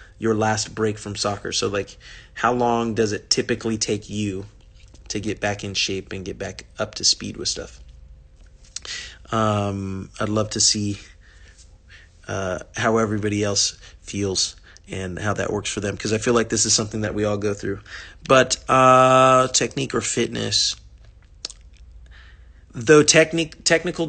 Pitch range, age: 100-120 Hz, 30-49